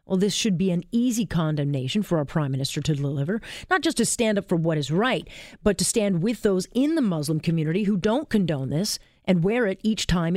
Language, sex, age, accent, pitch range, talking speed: English, female, 40-59, American, 165-220 Hz, 230 wpm